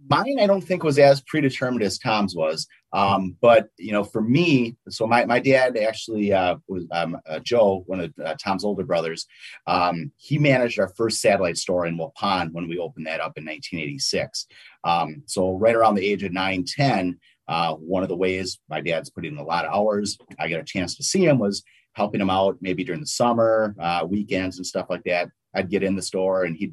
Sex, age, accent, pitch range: male, 30-49, American, 90-110 Hz